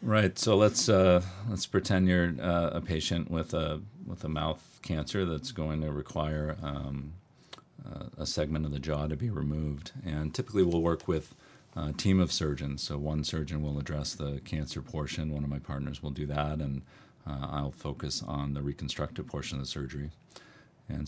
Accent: American